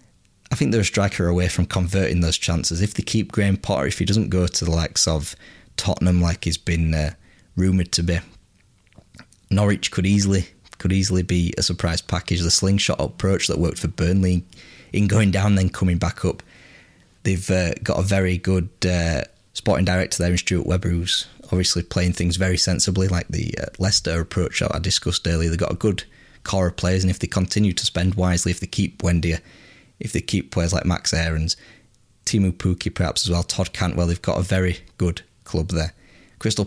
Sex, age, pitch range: male, 20-39, 85-95 Hz